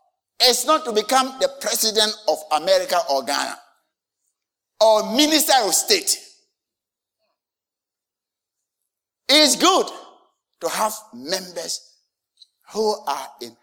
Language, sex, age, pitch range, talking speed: English, male, 60-79, 200-330 Hz, 95 wpm